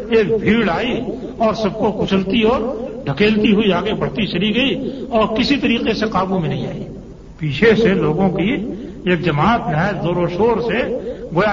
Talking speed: 175 wpm